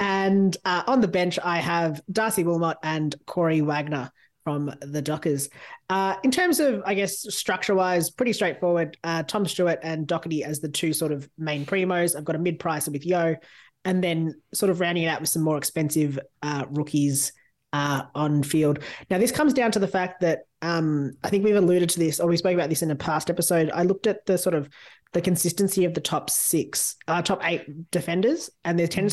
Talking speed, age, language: 210 wpm, 20-39, English